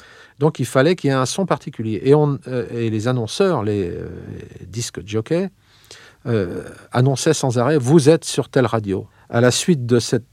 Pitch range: 115-150 Hz